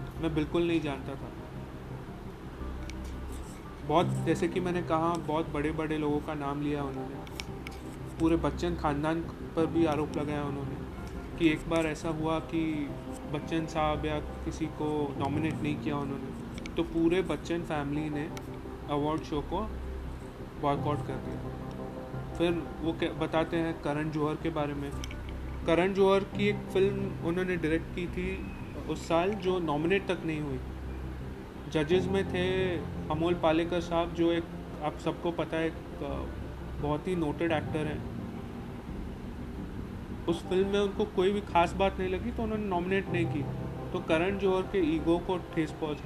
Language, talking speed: English, 150 wpm